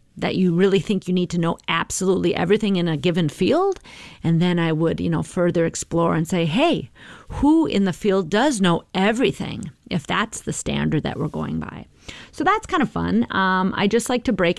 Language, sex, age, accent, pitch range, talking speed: English, female, 40-59, American, 170-230 Hz, 210 wpm